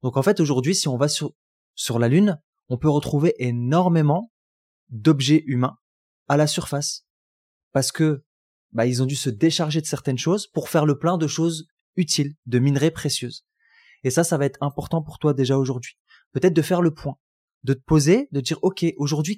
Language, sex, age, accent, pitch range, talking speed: French, male, 20-39, French, 135-175 Hz, 195 wpm